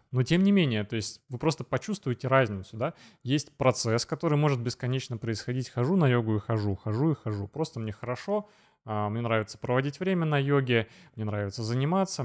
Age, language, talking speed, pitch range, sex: 20-39, Russian, 180 wpm, 110-140 Hz, male